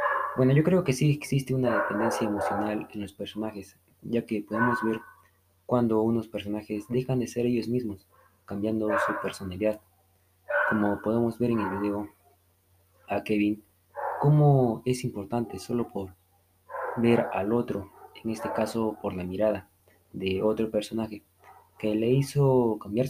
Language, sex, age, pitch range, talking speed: Spanish, male, 20-39, 95-120 Hz, 145 wpm